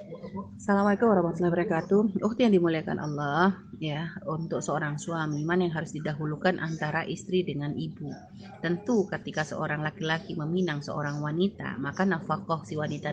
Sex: female